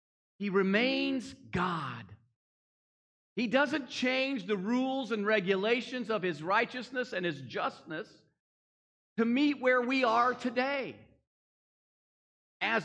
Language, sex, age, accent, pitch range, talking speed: English, male, 40-59, American, 195-285 Hz, 105 wpm